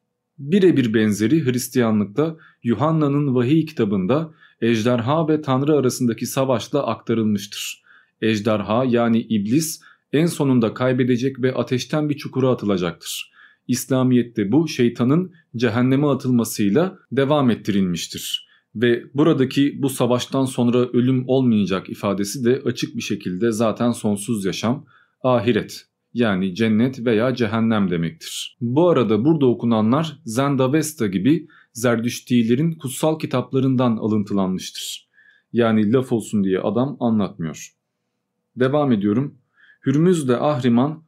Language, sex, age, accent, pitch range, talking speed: Turkish, male, 40-59, native, 115-140 Hz, 105 wpm